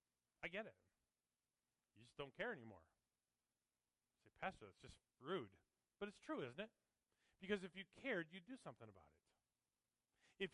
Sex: male